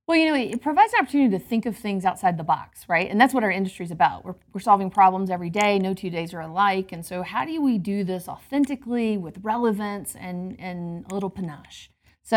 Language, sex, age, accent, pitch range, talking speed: English, female, 40-59, American, 180-210 Hz, 240 wpm